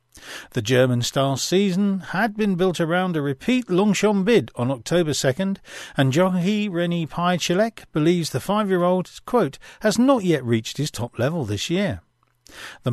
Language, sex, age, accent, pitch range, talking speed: English, male, 40-59, British, 125-200 Hz, 150 wpm